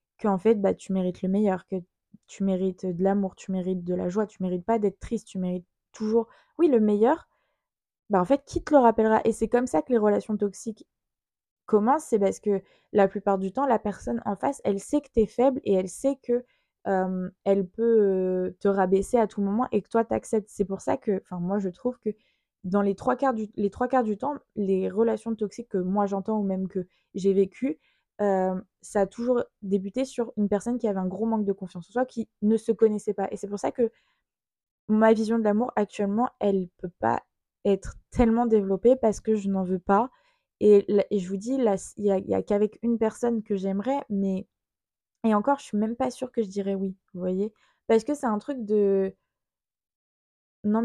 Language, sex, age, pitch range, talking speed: French, female, 20-39, 195-230 Hz, 220 wpm